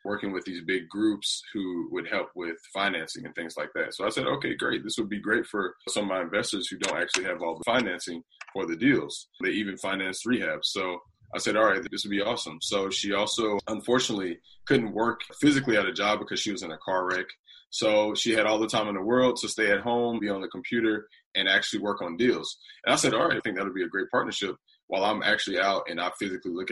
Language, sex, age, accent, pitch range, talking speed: English, male, 20-39, American, 95-120 Hz, 245 wpm